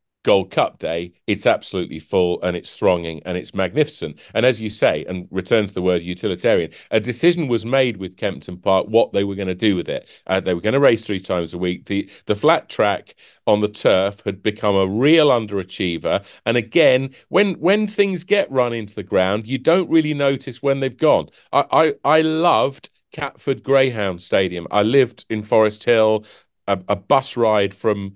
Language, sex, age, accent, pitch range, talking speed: English, male, 40-59, British, 95-130 Hz, 195 wpm